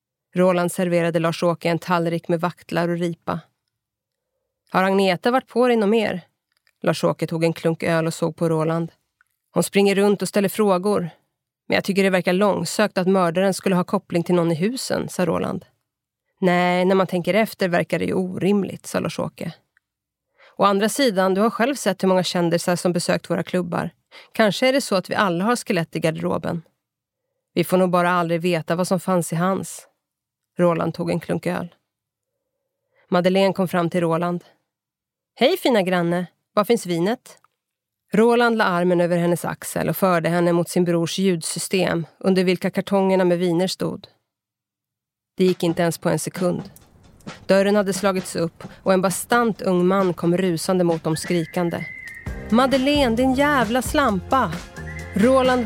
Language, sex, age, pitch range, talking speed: Swedish, female, 30-49, 170-200 Hz, 170 wpm